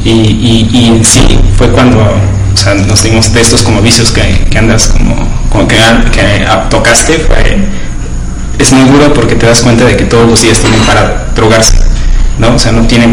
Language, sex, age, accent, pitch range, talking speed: Spanish, male, 30-49, Mexican, 105-120 Hz, 190 wpm